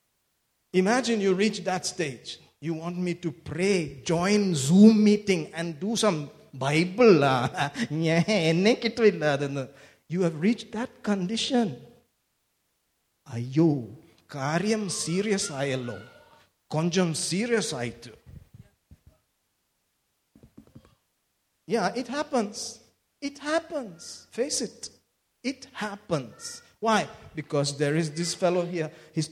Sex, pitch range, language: male, 170-245 Hz, English